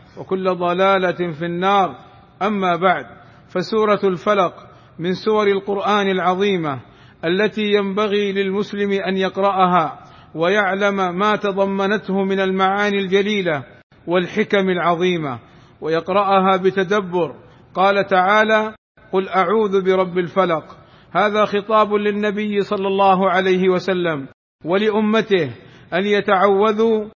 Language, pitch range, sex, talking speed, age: Arabic, 185-210 Hz, male, 95 wpm, 50-69